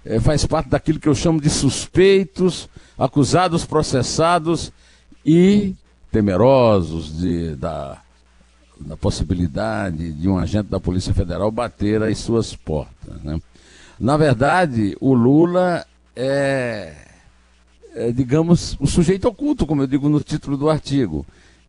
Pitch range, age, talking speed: 95-150 Hz, 60-79, 120 wpm